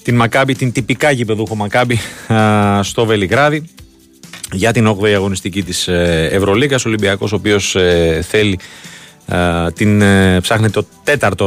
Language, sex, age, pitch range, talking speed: Greek, male, 30-49, 90-110 Hz, 115 wpm